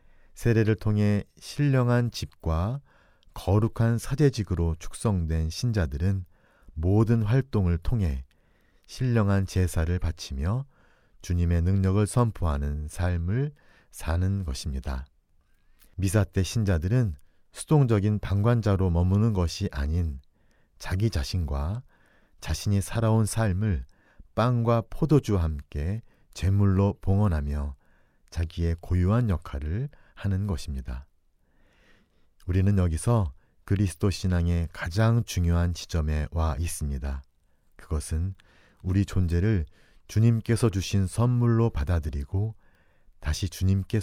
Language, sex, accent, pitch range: Korean, male, native, 80-105 Hz